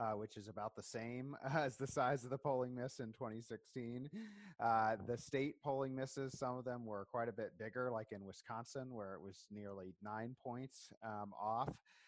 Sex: male